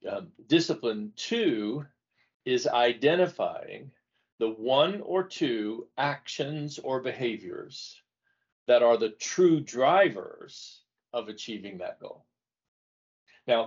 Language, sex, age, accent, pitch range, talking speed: English, male, 40-59, American, 110-150 Hz, 95 wpm